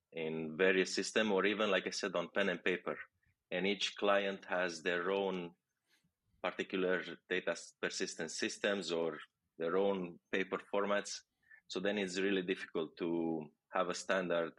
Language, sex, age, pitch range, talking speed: English, male, 30-49, 85-95 Hz, 150 wpm